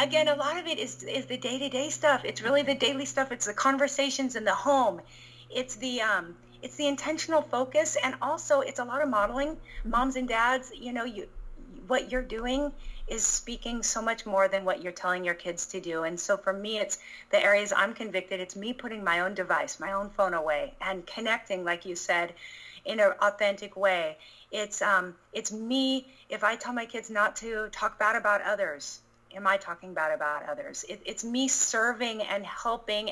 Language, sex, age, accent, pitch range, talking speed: English, female, 30-49, American, 195-260 Hz, 205 wpm